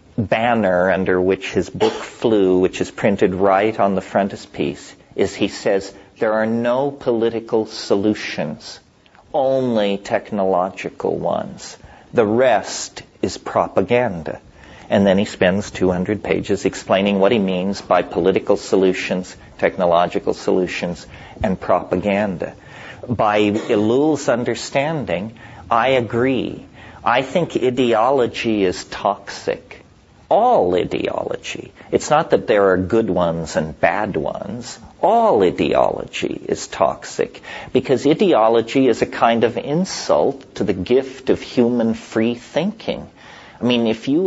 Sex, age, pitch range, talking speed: male, 50-69, 95-120 Hz, 120 wpm